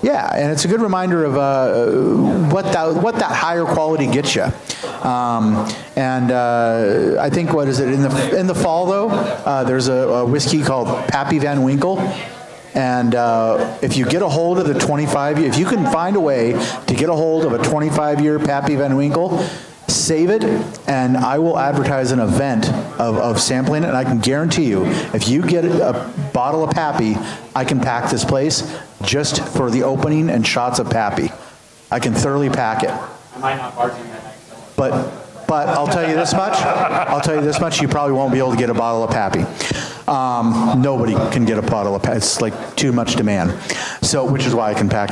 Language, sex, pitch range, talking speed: English, male, 120-155 Hz, 205 wpm